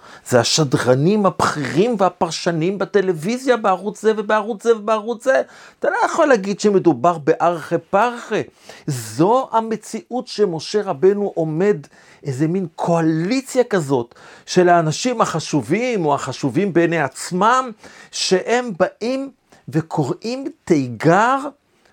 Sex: male